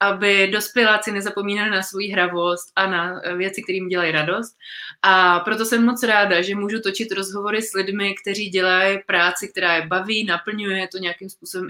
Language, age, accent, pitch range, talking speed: Czech, 20-39, native, 185-215 Hz, 170 wpm